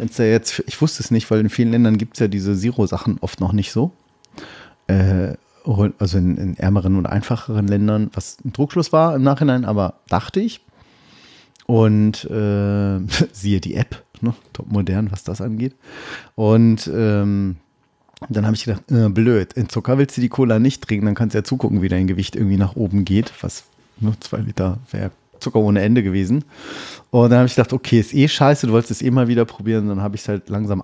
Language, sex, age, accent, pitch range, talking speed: German, male, 30-49, German, 100-130 Hz, 205 wpm